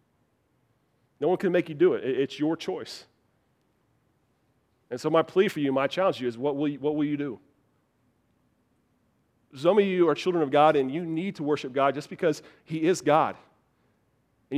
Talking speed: 185 wpm